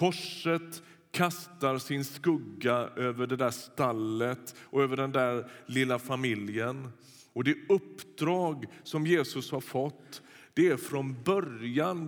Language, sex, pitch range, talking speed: Swedish, male, 110-150 Hz, 125 wpm